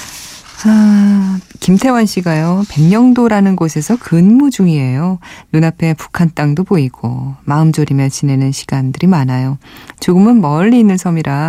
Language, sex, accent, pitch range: Korean, female, native, 135-185 Hz